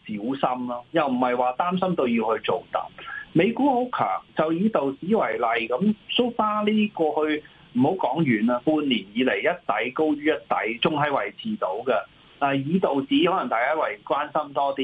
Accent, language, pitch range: native, Chinese, 125-210 Hz